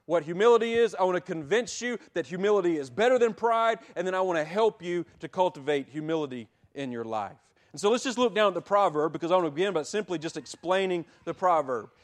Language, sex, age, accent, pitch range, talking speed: English, male, 40-59, American, 170-235 Hz, 235 wpm